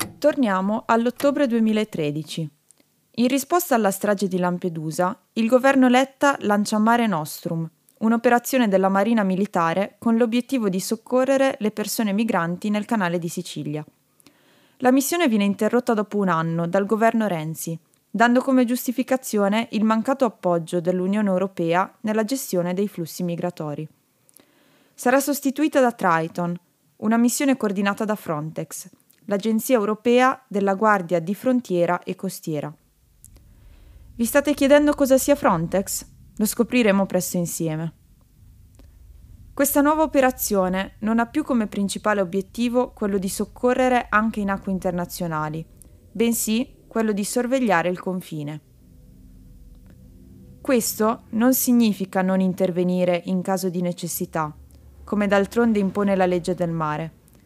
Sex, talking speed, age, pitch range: female, 125 wpm, 20-39, 180-240 Hz